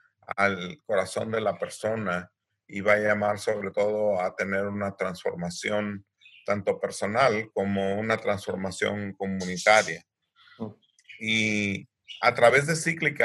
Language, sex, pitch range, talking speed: Spanish, male, 100-165 Hz, 120 wpm